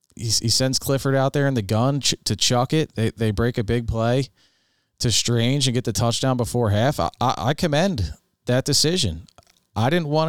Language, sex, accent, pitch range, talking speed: English, male, American, 110-130 Hz, 190 wpm